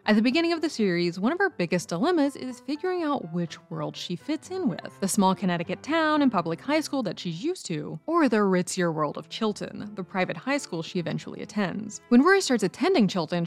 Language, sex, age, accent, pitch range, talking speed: English, female, 20-39, American, 185-285 Hz, 225 wpm